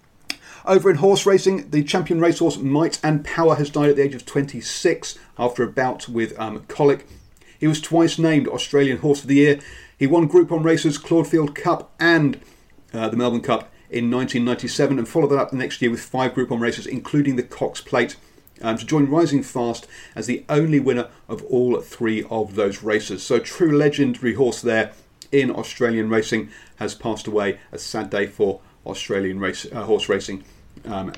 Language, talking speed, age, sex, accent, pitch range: English, 185 wpm, 40-59, male, British, 125-165 Hz